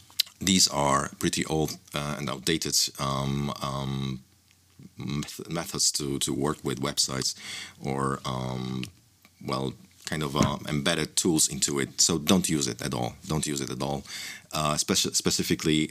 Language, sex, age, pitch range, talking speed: Polish, male, 30-49, 70-80 Hz, 145 wpm